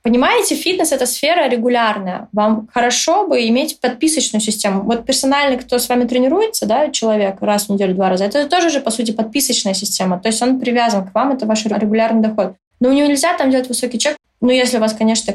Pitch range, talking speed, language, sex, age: 205-250 Hz, 215 wpm, Russian, female, 20-39